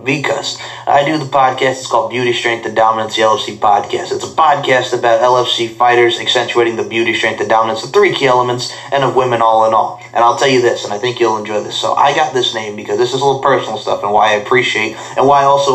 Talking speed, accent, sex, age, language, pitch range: 255 wpm, American, male, 30-49, English, 110-130 Hz